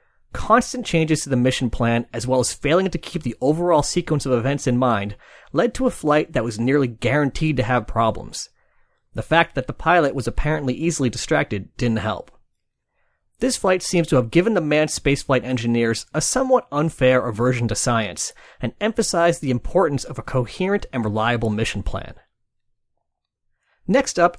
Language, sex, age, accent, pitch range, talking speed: English, male, 30-49, American, 120-170 Hz, 170 wpm